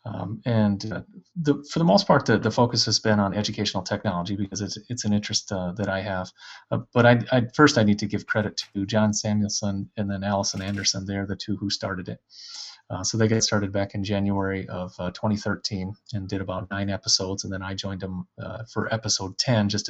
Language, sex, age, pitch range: English, male, 30-49, 100-110 Hz